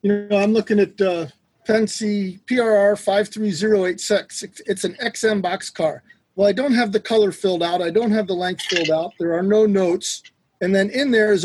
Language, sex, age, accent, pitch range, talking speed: English, male, 40-59, American, 175-210 Hz, 200 wpm